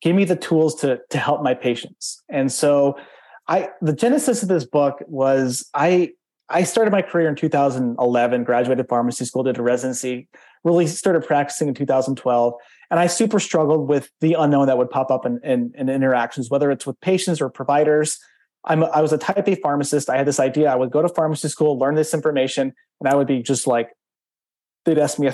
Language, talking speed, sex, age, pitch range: English, 210 wpm, male, 30-49, 130-160 Hz